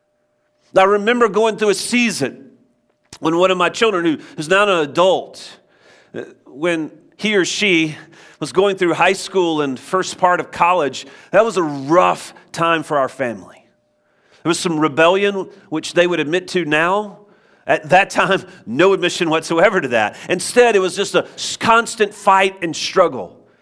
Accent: American